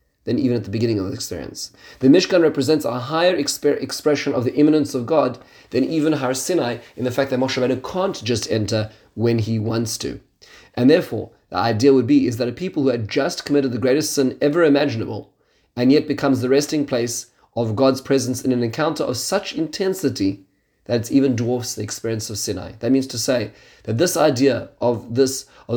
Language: English